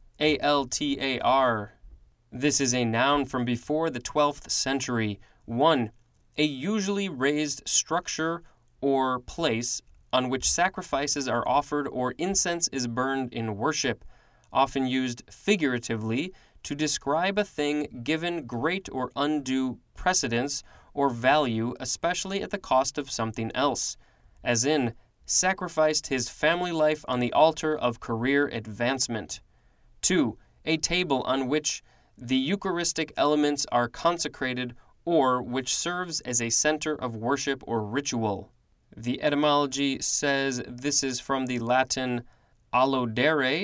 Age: 20-39